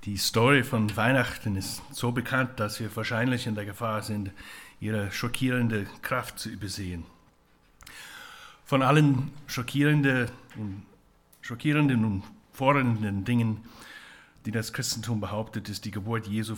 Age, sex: 60-79, male